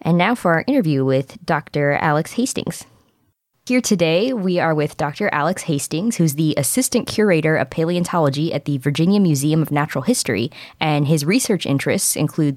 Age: 20-39